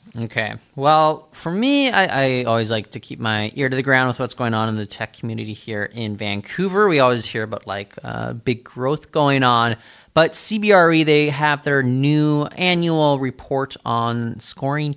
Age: 30-49